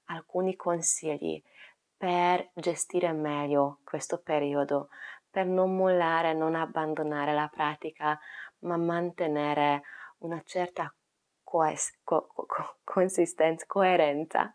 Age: 20-39